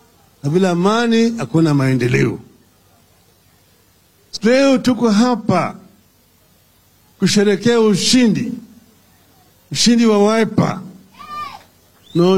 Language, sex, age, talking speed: English, male, 50-69, 50 wpm